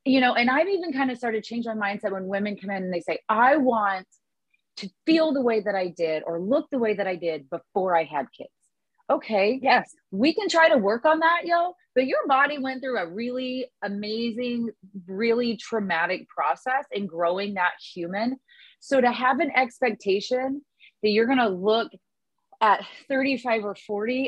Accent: American